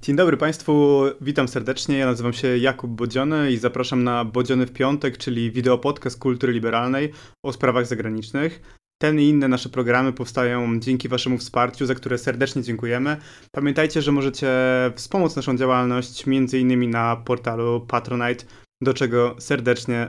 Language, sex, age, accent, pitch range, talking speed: Polish, male, 20-39, native, 125-145 Hz, 145 wpm